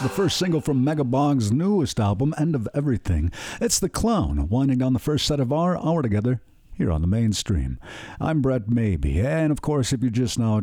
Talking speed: 205 wpm